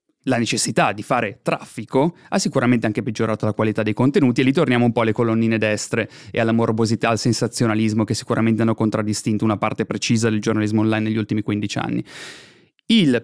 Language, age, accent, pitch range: Italian, 30-49, native, 115-150 Hz